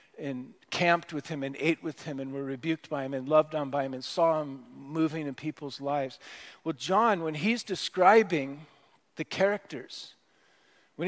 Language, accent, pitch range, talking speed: English, American, 155-200 Hz, 180 wpm